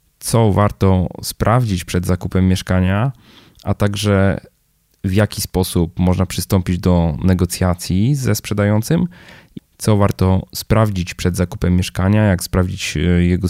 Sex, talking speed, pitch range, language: male, 115 wpm, 90-105 Hz, Polish